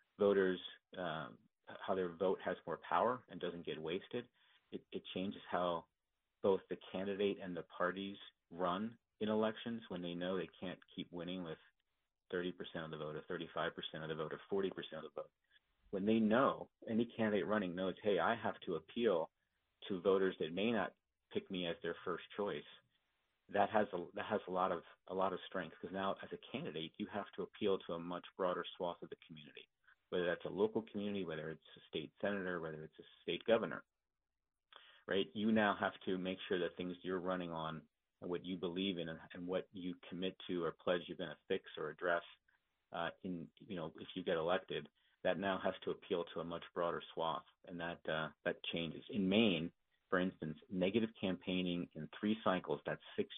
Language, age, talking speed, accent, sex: English, 40-59, 200 wpm, American, male